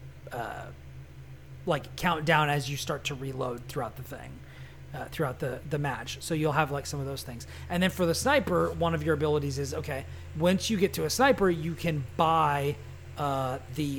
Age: 30-49